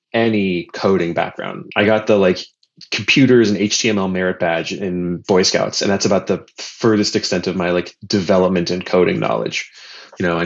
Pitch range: 90-110 Hz